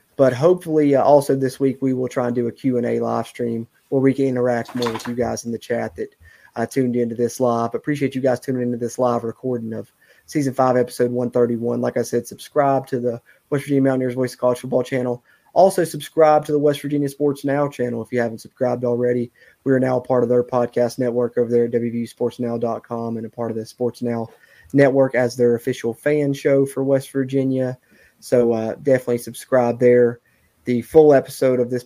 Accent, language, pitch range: American, English, 115-130 Hz